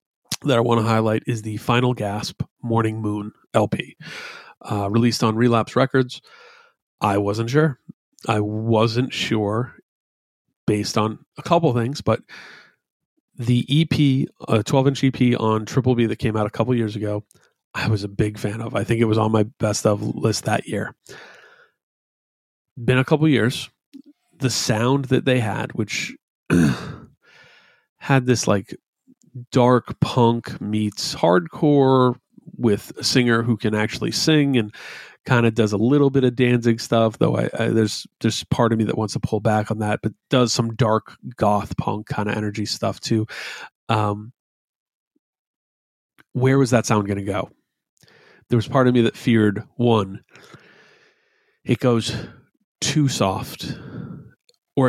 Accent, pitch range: American, 110-130 Hz